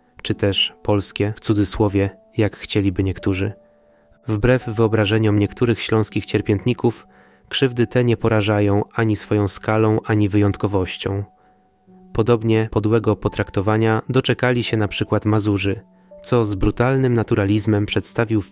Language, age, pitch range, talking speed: Polish, 20-39, 100-110 Hz, 115 wpm